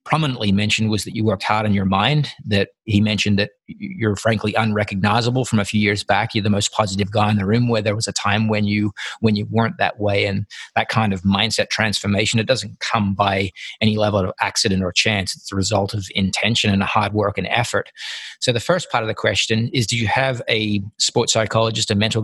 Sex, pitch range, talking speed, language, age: male, 105-115 Hz, 230 wpm, English, 40-59